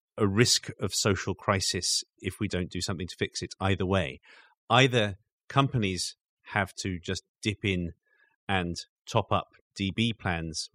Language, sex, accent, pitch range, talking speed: English, male, British, 90-110 Hz, 150 wpm